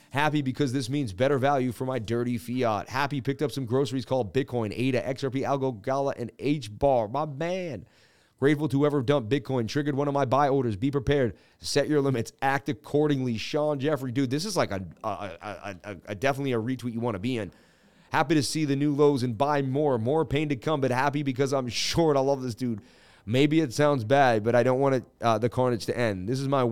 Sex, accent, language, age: male, American, English, 30-49